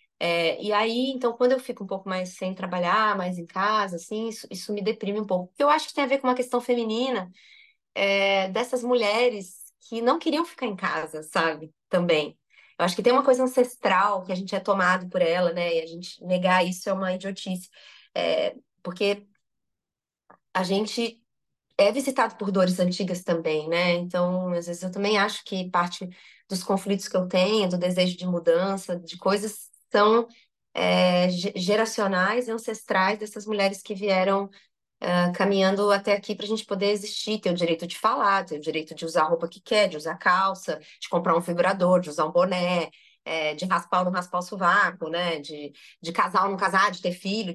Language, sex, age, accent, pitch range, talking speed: Portuguese, female, 20-39, Brazilian, 180-225 Hz, 200 wpm